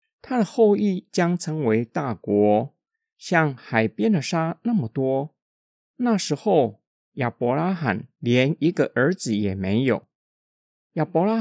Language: Chinese